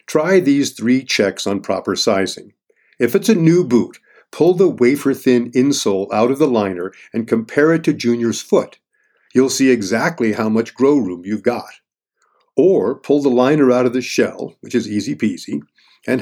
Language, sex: English, male